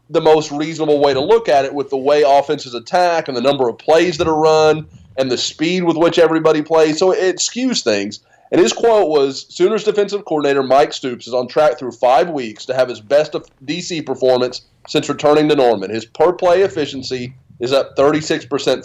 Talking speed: 205 wpm